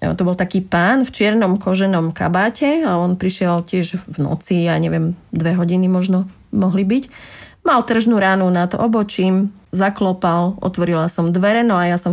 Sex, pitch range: female, 180-225 Hz